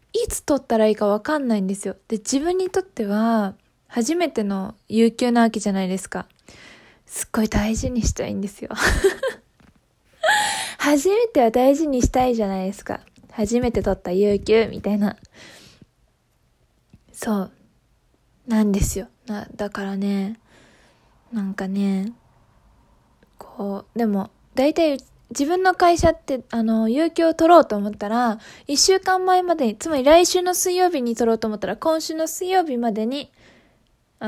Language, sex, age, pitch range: Japanese, female, 20-39, 210-310 Hz